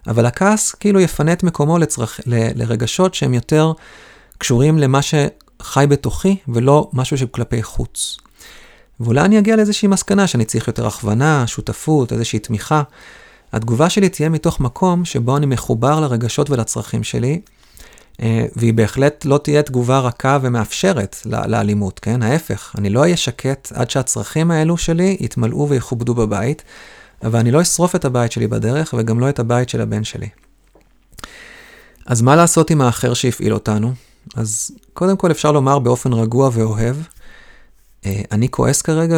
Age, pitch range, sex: 30-49, 115-155 Hz, male